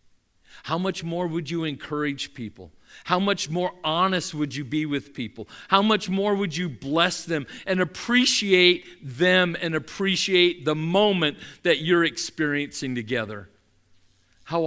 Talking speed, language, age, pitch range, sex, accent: 145 wpm, English, 50-69, 95-155 Hz, male, American